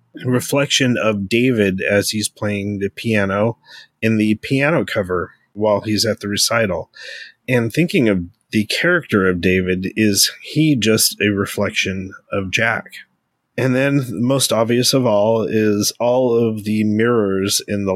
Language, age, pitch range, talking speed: English, 30-49, 105-120 Hz, 145 wpm